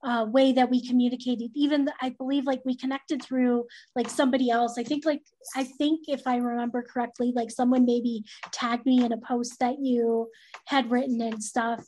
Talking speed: 190 wpm